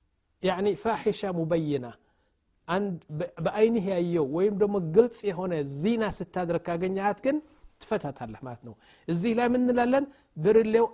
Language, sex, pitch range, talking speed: Amharic, male, 160-210 Hz, 125 wpm